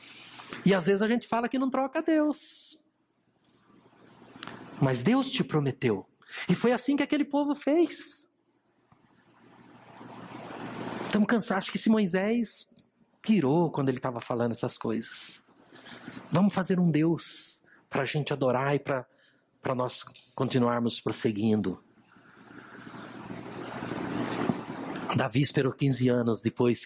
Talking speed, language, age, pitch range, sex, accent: 115 wpm, Portuguese, 50-69, 130-190 Hz, male, Brazilian